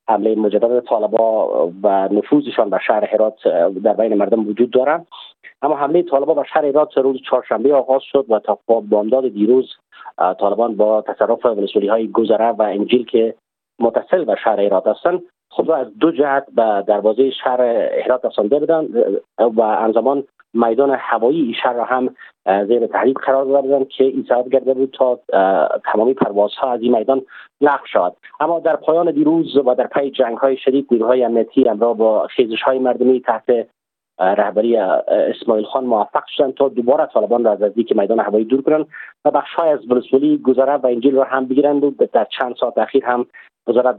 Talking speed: 170 wpm